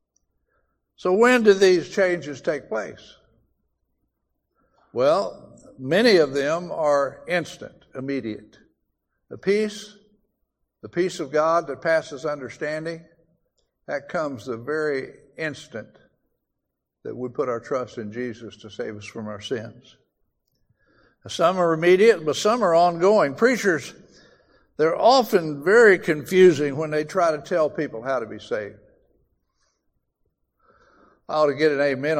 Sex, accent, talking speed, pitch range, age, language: male, American, 130 wpm, 135-180 Hz, 60-79, English